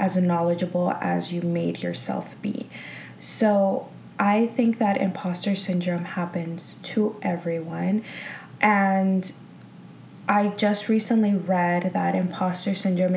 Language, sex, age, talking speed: English, female, 20-39, 110 wpm